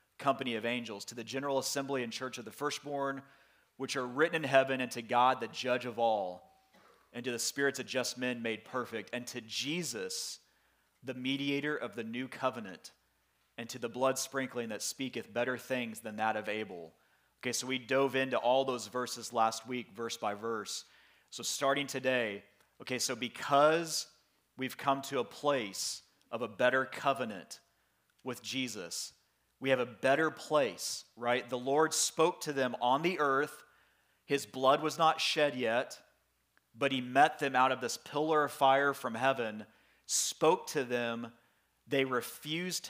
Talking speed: 170 wpm